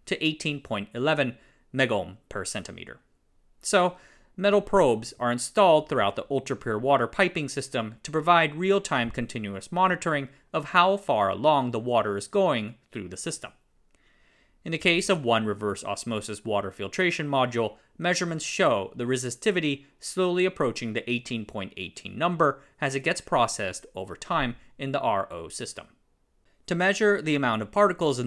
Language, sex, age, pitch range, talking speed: English, male, 30-49, 115-170 Hz, 145 wpm